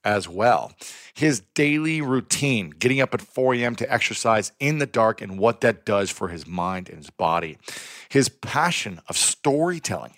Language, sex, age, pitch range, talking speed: English, male, 40-59, 100-130 Hz, 170 wpm